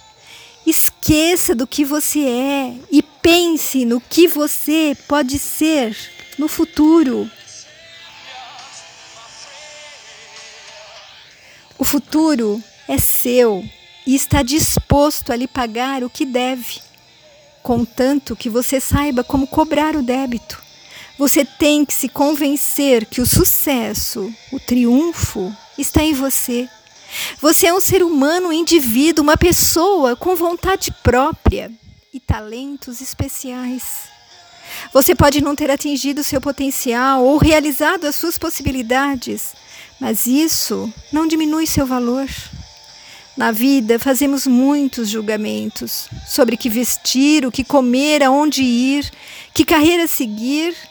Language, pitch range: Portuguese, 250-305 Hz